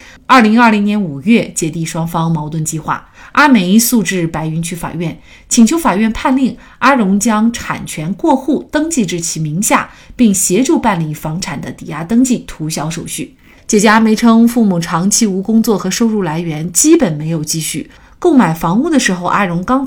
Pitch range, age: 170-245 Hz, 30-49